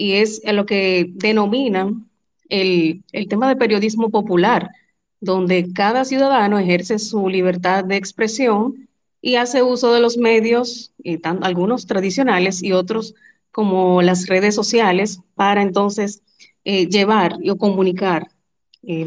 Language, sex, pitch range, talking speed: Spanish, female, 185-225 Hz, 135 wpm